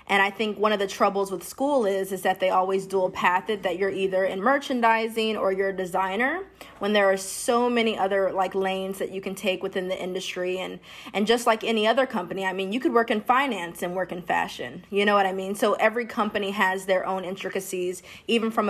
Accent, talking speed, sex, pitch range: American, 235 wpm, female, 185-210 Hz